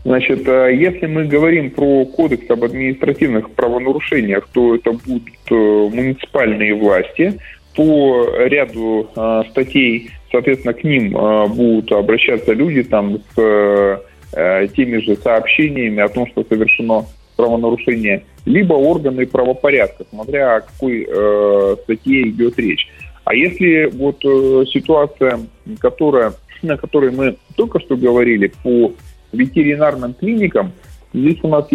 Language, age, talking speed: Russian, 20-39, 120 wpm